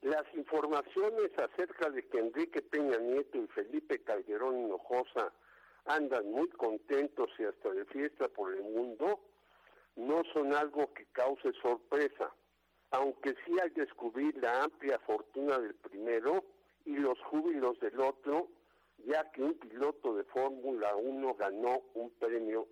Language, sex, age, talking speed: Spanish, male, 60-79, 135 wpm